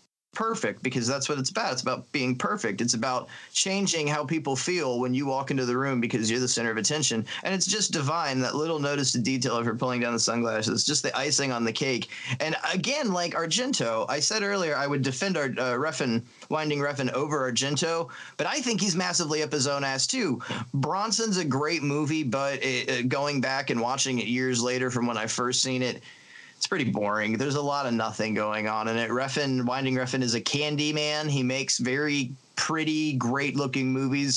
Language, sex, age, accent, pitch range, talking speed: English, male, 30-49, American, 120-150 Hz, 210 wpm